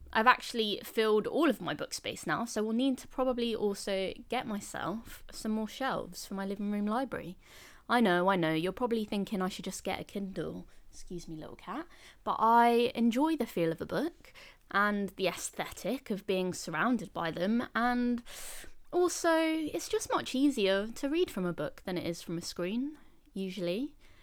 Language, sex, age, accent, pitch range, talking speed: English, female, 20-39, British, 195-260 Hz, 190 wpm